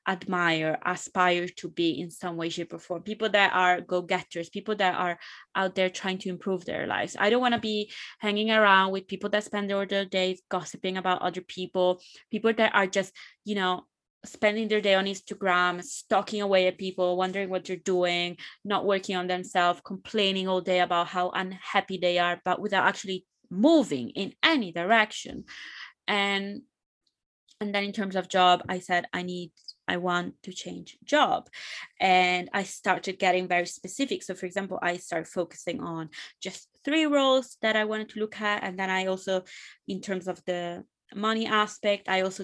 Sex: female